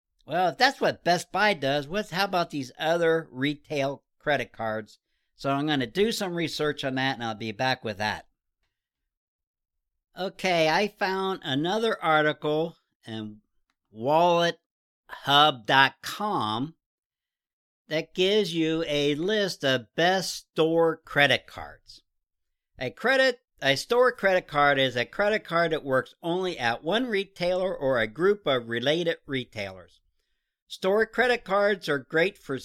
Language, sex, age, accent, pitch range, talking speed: English, male, 60-79, American, 135-195 Hz, 140 wpm